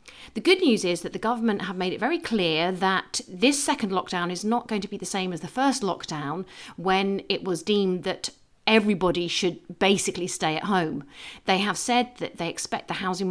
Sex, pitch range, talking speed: female, 175-215 Hz, 205 wpm